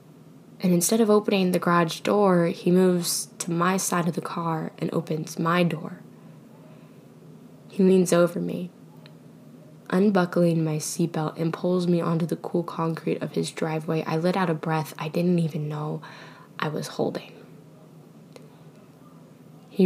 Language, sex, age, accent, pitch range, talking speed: English, female, 10-29, American, 160-185 Hz, 150 wpm